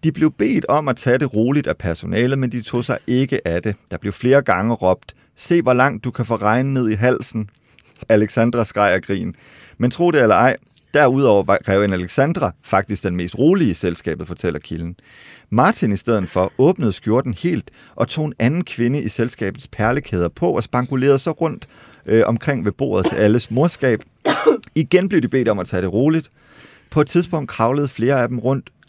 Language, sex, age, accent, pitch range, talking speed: Danish, male, 30-49, native, 105-140 Hz, 200 wpm